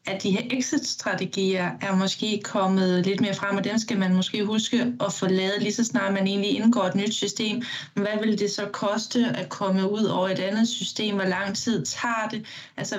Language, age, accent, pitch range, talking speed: Danish, 20-39, native, 190-225 Hz, 210 wpm